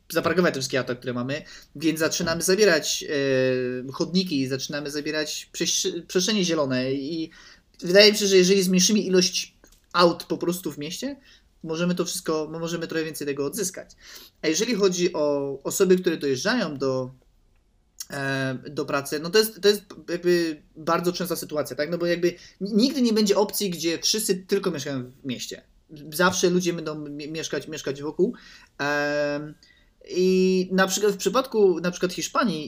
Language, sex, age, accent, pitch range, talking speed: Polish, male, 20-39, native, 150-190 Hz, 160 wpm